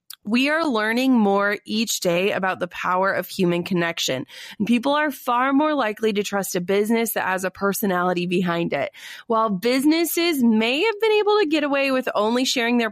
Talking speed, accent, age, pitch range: 185 wpm, American, 20-39, 195-250 Hz